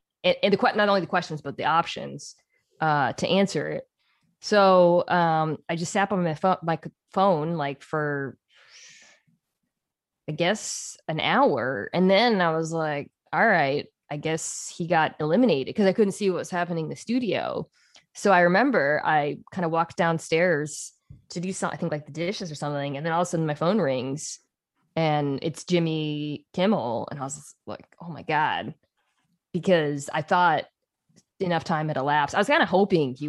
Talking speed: 180 wpm